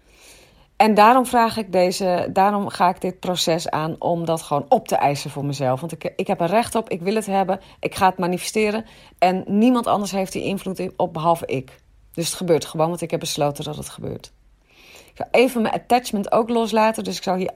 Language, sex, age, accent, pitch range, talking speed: Dutch, female, 30-49, Dutch, 180-230 Hz, 220 wpm